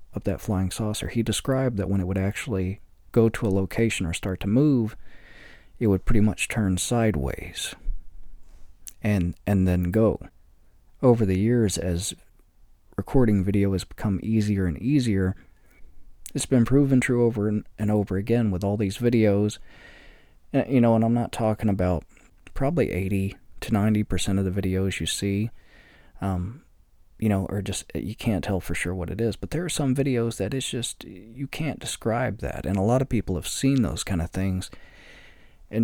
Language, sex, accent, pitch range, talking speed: English, male, American, 95-115 Hz, 175 wpm